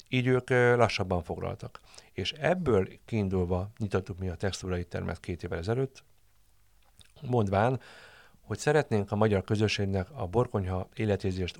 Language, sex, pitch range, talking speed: Hungarian, male, 95-110 Hz, 125 wpm